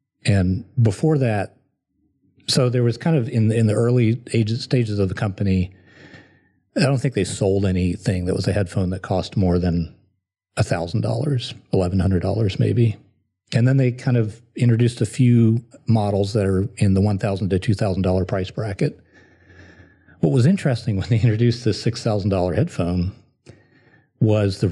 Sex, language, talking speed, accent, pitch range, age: male, English, 150 wpm, American, 95-120 Hz, 40-59